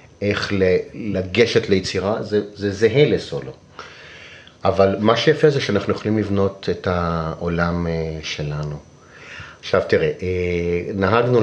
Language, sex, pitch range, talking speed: Hebrew, male, 85-105 Hz, 105 wpm